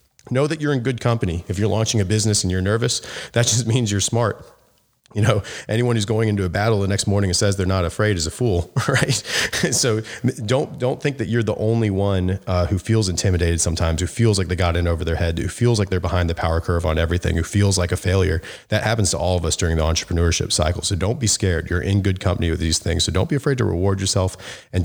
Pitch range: 85-110 Hz